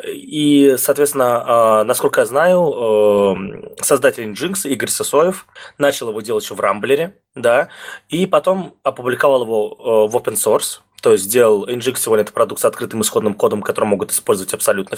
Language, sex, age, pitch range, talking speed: Russian, male, 20-39, 110-175 Hz, 165 wpm